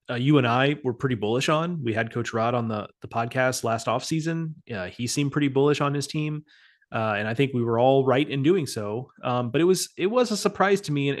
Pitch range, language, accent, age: 115-145 Hz, English, American, 30-49